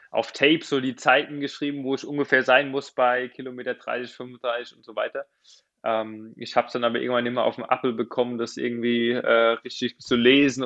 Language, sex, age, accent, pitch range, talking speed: German, male, 20-39, German, 120-145 Hz, 205 wpm